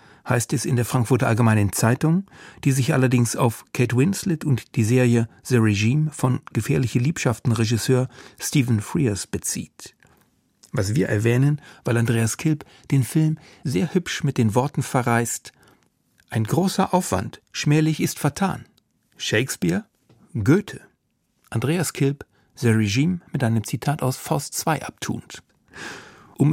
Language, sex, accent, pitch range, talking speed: German, male, German, 120-160 Hz, 135 wpm